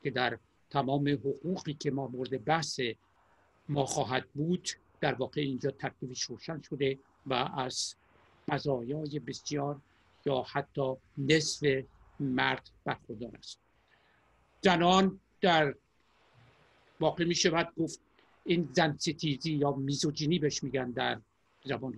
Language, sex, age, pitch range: Persian, male, 60-79, 130-160 Hz